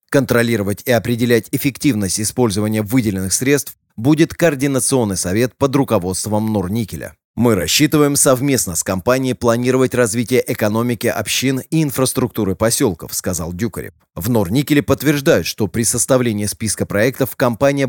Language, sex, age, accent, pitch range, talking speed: Russian, male, 30-49, native, 105-135 Hz, 120 wpm